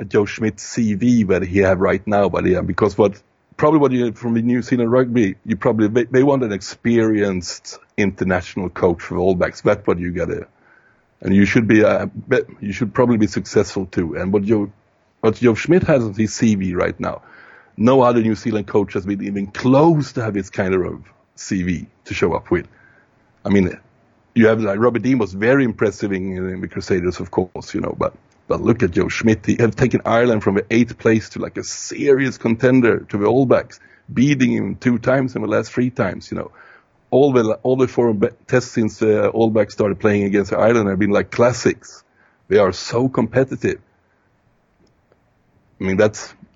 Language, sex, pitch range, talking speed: English, male, 100-125 Hz, 200 wpm